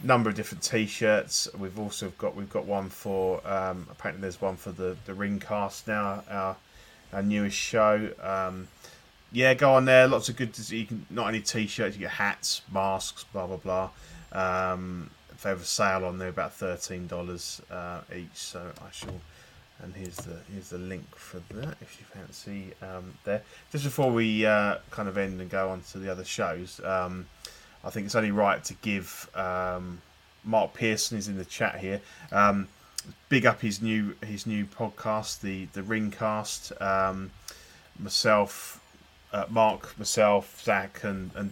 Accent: British